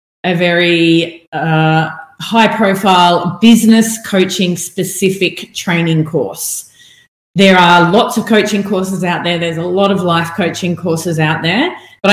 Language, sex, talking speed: English, female, 130 wpm